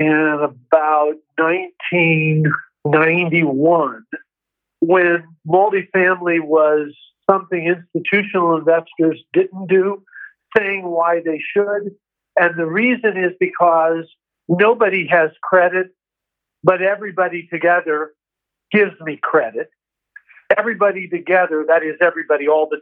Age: 50-69